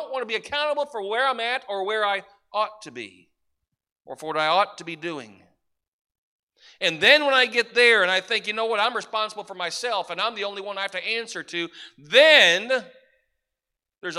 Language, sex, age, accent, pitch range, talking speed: English, male, 40-59, American, 185-250 Hz, 210 wpm